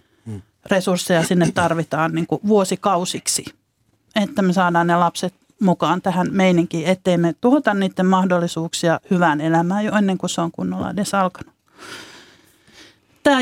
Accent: native